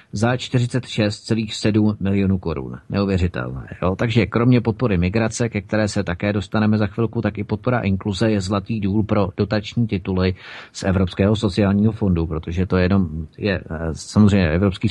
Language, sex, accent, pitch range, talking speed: Czech, male, native, 100-125 Hz, 155 wpm